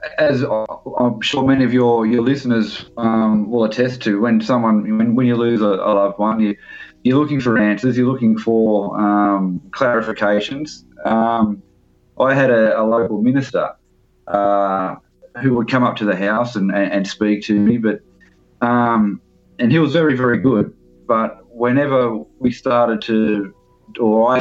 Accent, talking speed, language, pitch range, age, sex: Australian, 165 wpm, English, 100-120 Hz, 20-39, male